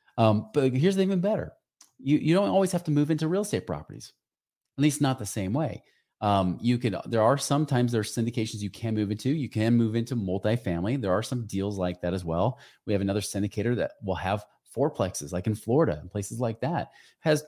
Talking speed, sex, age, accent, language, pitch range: 225 wpm, male, 30-49, American, English, 100-135 Hz